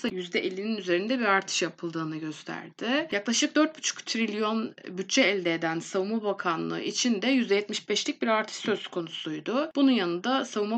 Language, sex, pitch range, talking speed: Turkish, female, 180-235 Hz, 135 wpm